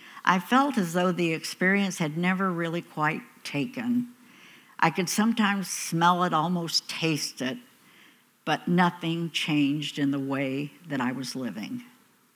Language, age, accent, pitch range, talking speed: English, 60-79, American, 145-195 Hz, 140 wpm